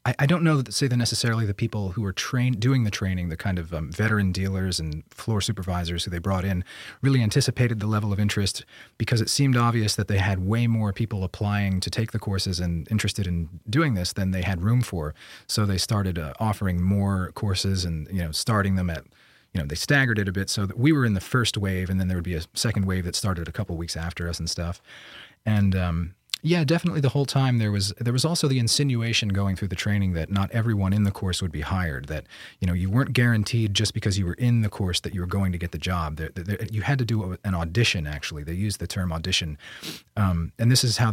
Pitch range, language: 90-115 Hz, English